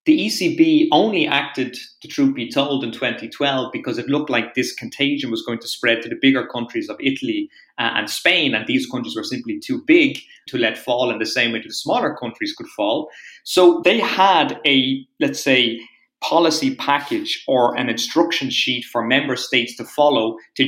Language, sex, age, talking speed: English, male, 30-49, 190 wpm